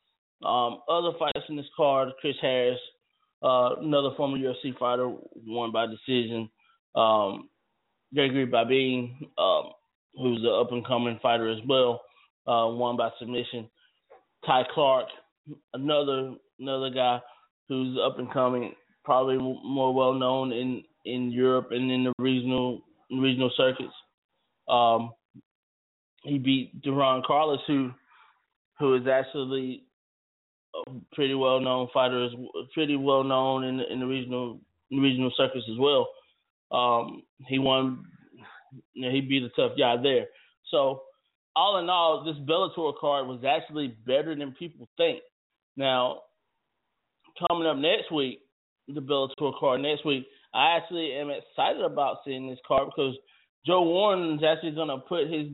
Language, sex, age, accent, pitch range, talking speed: English, male, 20-39, American, 125-145 Hz, 145 wpm